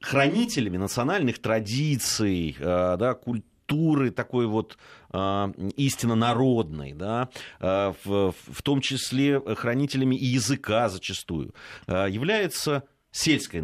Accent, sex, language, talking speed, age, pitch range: native, male, Russian, 75 wpm, 30-49, 95-130 Hz